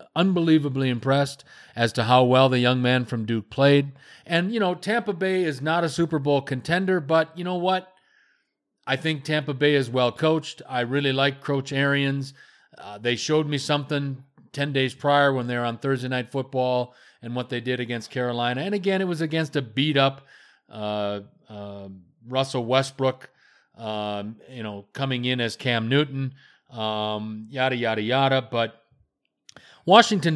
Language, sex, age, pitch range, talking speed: English, male, 40-59, 115-145 Hz, 165 wpm